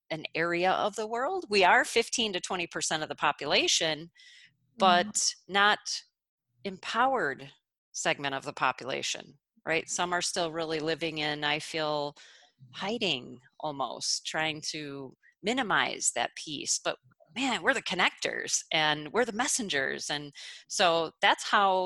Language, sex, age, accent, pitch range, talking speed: English, female, 30-49, American, 155-205 Hz, 135 wpm